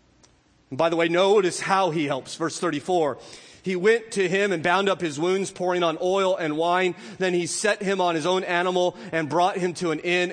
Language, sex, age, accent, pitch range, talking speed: English, male, 40-59, American, 165-205 Hz, 220 wpm